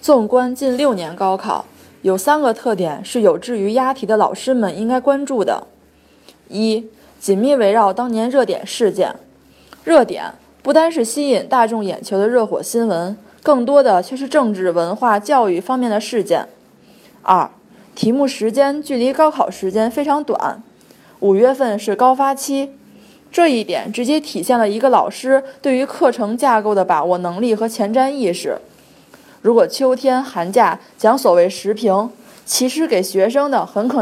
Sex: female